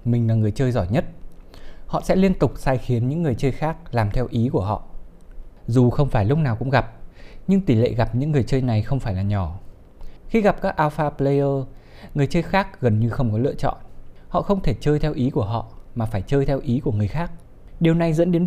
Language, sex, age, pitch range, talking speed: Vietnamese, male, 20-39, 110-150 Hz, 240 wpm